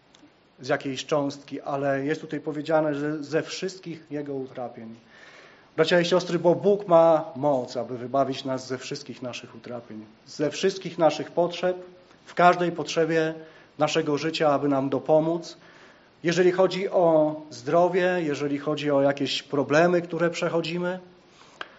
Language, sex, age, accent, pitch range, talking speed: Polish, male, 30-49, native, 145-175 Hz, 135 wpm